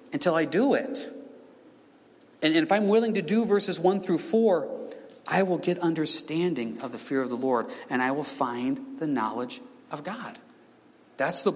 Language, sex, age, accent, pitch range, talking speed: English, male, 40-59, American, 135-220 Hz, 175 wpm